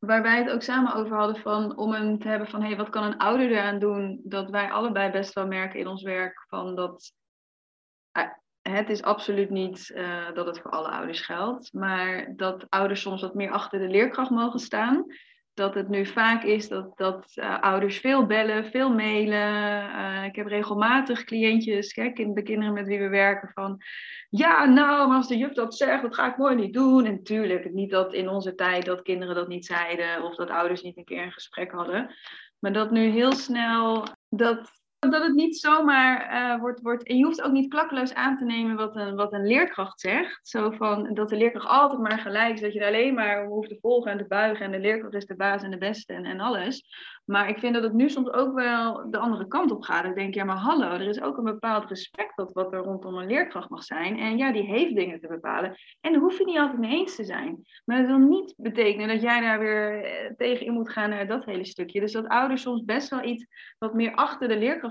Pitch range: 195-240 Hz